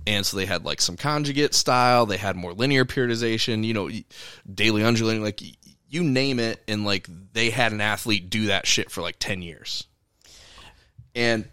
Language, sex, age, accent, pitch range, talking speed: English, male, 20-39, American, 105-130 Hz, 180 wpm